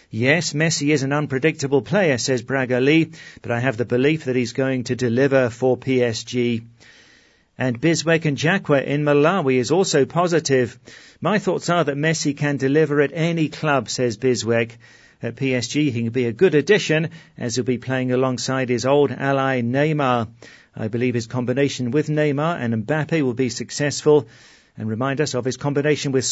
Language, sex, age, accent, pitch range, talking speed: English, male, 40-59, British, 125-150 Hz, 175 wpm